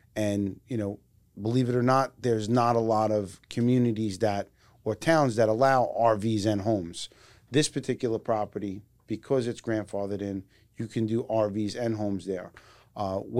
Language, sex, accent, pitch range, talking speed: English, male, American, 105-125 Hz, 160 wpm